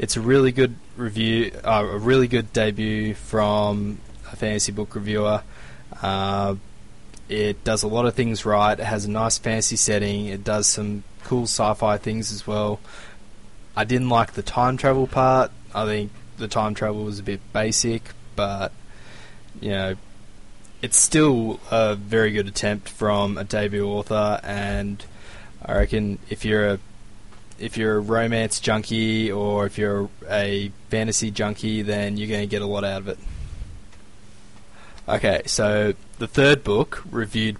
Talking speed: 160 wpm